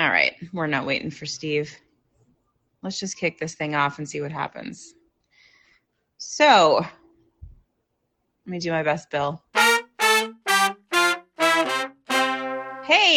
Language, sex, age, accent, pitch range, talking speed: English, female, 20-39, American, 150-225 Hz, 115 wpm